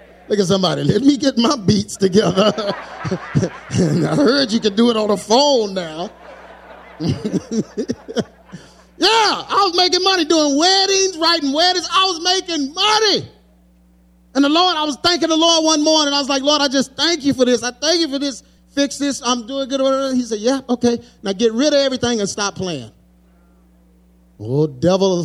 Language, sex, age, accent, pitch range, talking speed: English, male, 30-49, American, 170-285 Hz, 180 wpm